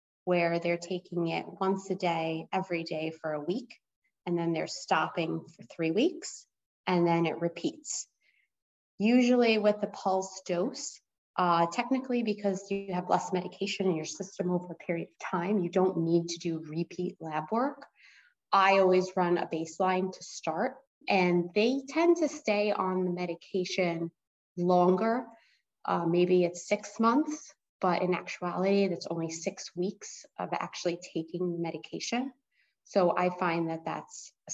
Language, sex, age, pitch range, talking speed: English, female, 20-39, 175-200 Hz, 155 wpm